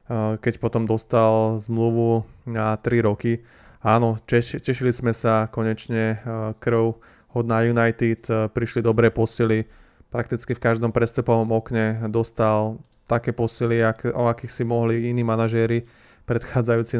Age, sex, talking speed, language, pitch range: 20-39, male, 125 wpm, Slovak, 115-125 Hz